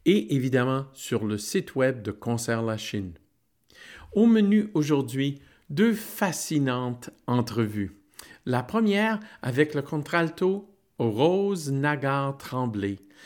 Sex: male